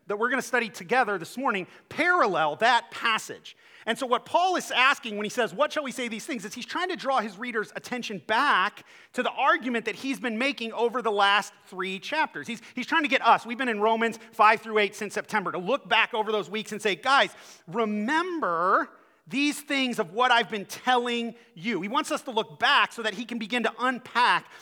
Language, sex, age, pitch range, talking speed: English, male, 40-59, 185-245 Hz, 225 wpm